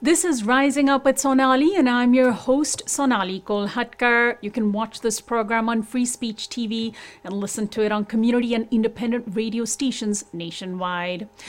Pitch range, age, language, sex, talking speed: 220-300 Hz, 30-49, English, female, 165 wpm